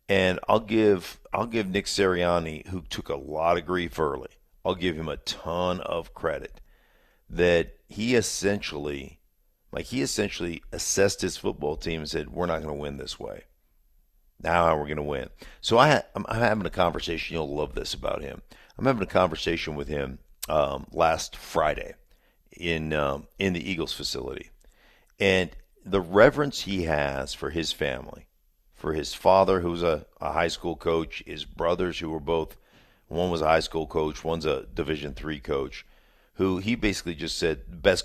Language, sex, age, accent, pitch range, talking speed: English, male, 50-69, American, 75-95 Hz, 180 wpm